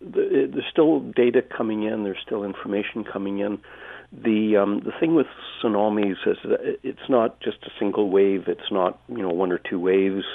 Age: 50-69